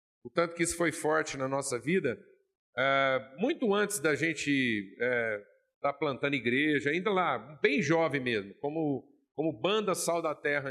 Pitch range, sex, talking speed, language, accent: 135-200 Hz, male, 150 wpm, Portuguese, Brazilian